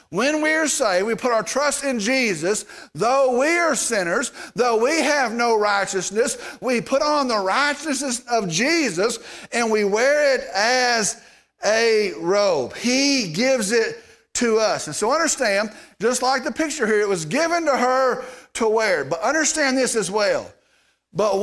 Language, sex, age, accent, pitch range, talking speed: English, male, 50-69, American, 225-280 Hz, 165 wpm